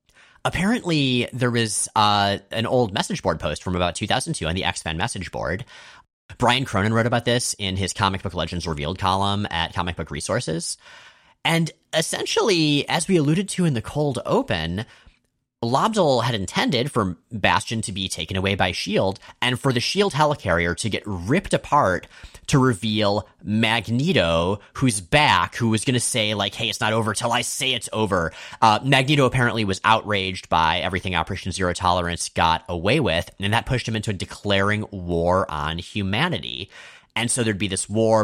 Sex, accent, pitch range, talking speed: male, American, 95-120 Hz, 175 wpm